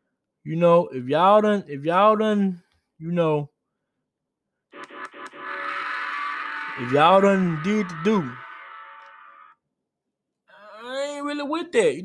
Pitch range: 145-210 Hz